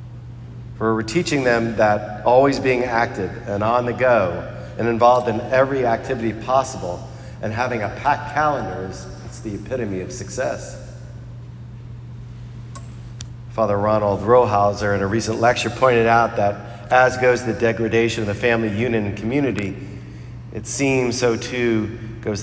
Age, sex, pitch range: 40-59, male, 110-120 Hz